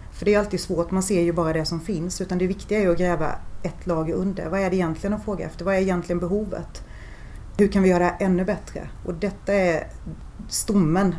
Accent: native